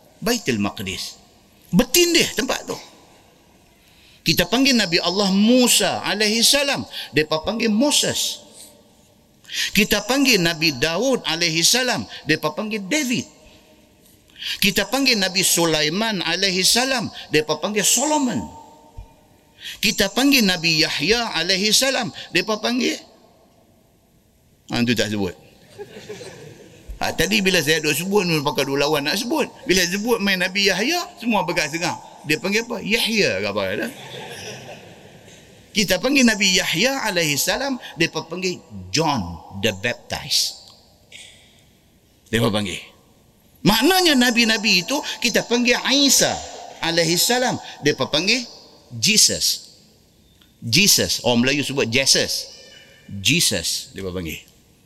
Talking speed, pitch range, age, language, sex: 105 wpm, 155-235 Hz, 50-69, Malay, male